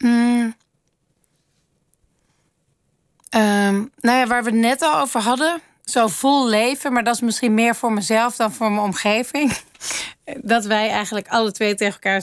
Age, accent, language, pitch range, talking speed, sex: 30-49, Dutch, Dutch, 195-245 Hz, 155 wpm, female